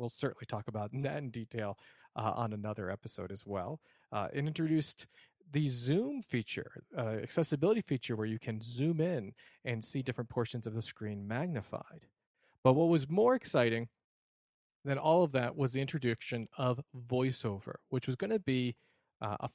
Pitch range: 115-145 Hz